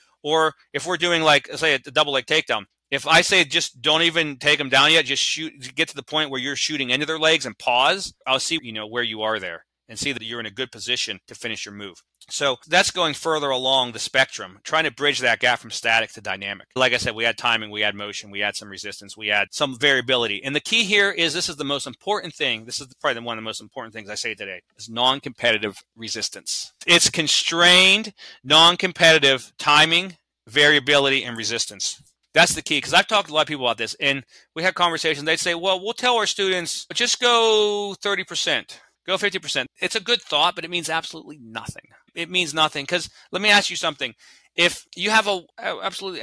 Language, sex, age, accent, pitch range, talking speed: English, male, 30-49, American, 130-180 Hz, 225 wpm